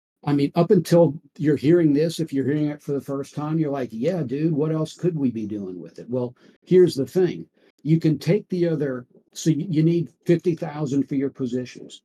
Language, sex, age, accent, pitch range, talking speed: English, male, 50-69, American, 120-155 Hz, 215 wpm